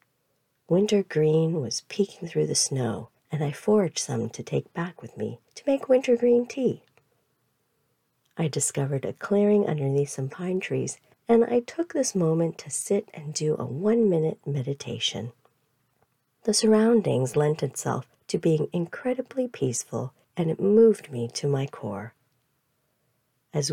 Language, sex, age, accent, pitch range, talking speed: English, female, 50-69, American, 130-195 Hz, 140 wpm